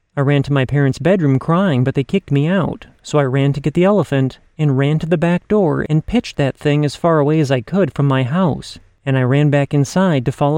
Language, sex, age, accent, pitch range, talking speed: English, male, 30-49, American, 140-180 Hz, 255 wpm